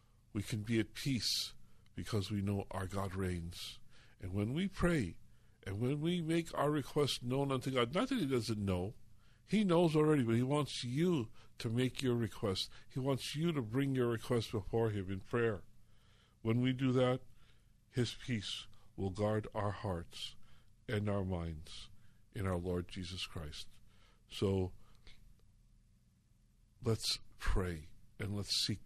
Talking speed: 155 wpm